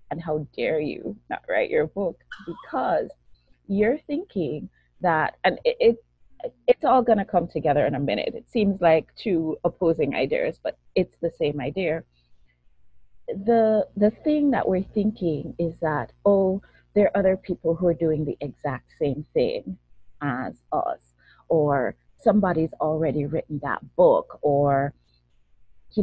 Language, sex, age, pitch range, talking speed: English, female, 30-49, 145-210 Hz, 150 wpm